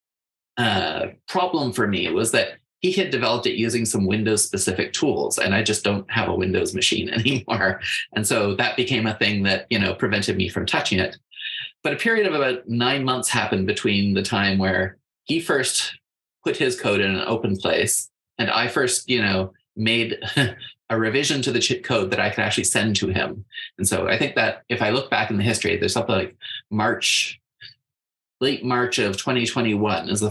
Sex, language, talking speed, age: male, English, 200 wpm, 20-39